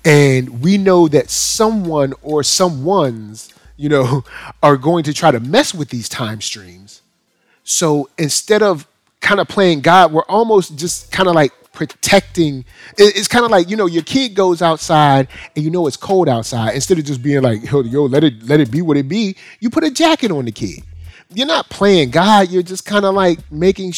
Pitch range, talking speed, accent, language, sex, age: 130-185 Hz, 200 wpm, American, English, male, 30-49